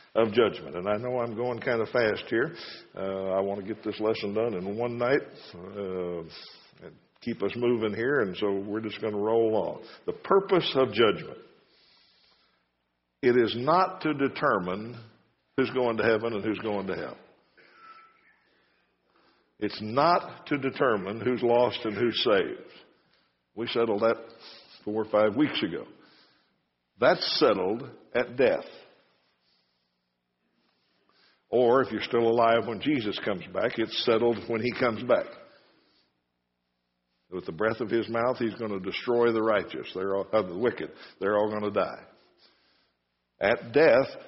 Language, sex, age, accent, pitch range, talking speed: English, male, 60-79, American, 95-120 Hz, 155 wpm